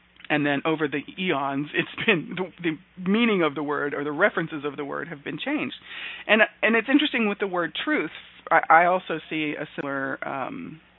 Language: English